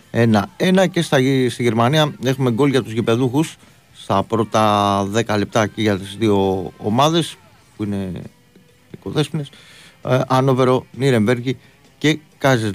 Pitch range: 105-130 Hz